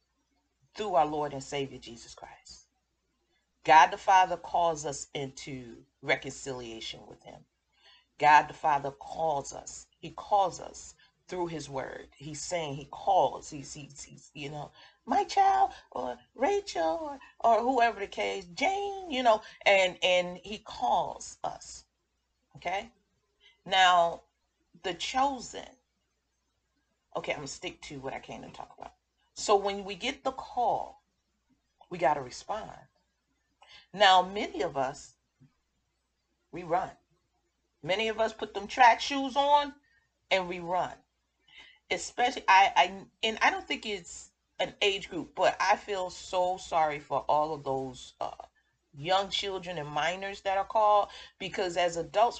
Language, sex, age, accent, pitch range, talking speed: English, female, 40-59, American, 150-215 Hz, 145 wpm